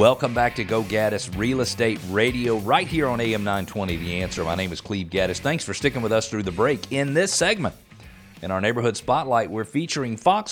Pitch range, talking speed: 100-130 Hz, 215 wpm